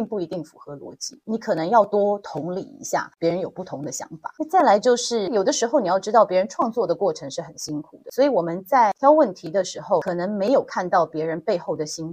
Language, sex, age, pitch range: Chinese, female, 30-49, 165-220 Hz